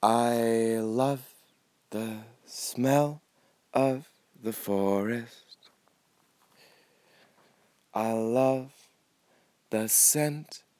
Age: 20-39